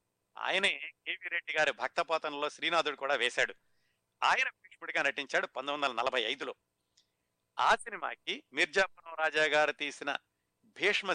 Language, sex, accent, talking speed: Telugu, male, native, 120 wpm